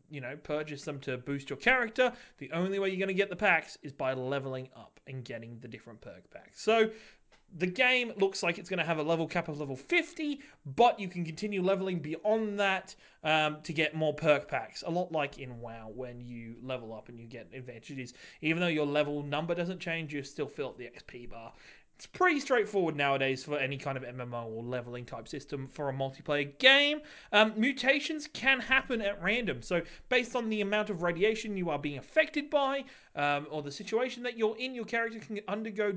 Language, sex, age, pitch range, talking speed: English, male, 30-49, 140-205 Hz, 210 wpm